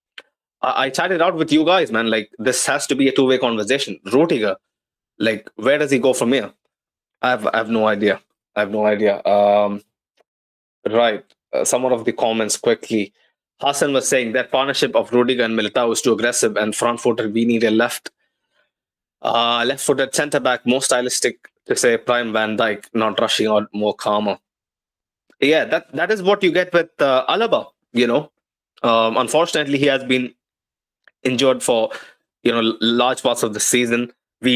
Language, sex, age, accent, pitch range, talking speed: English, male, 20-39, Indian, 110-130 Hz, 175 wpm